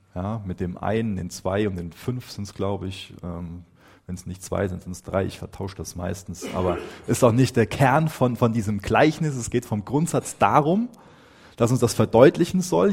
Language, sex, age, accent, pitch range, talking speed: German, male, 30-49, German, 105-155 Hz, 215 wpm